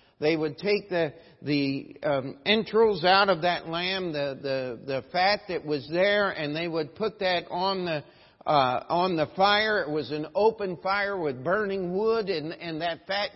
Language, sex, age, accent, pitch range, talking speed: English, male, 50-69, American, 140-185 Hz, 185 wpm